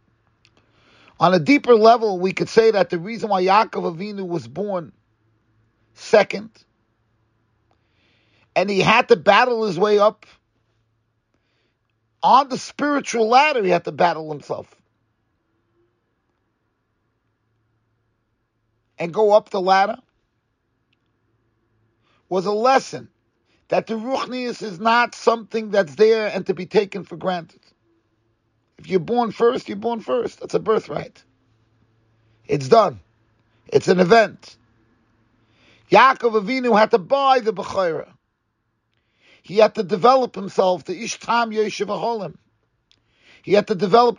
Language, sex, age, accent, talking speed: English, male, 40-59, American, 120 wpm